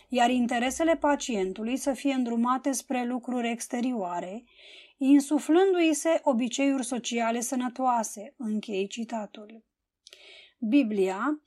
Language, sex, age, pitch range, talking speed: Romanian, female, 20-39, 235-310 Hz, 85 wpm